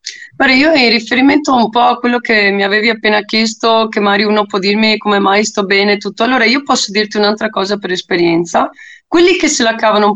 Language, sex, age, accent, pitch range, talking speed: Italian, female, 20-39, native, 190-245 Hz, 215 wpm